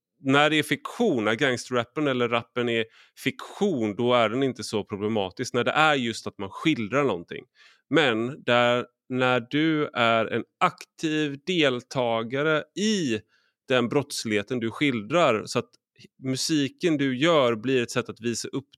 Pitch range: 105-135 Hz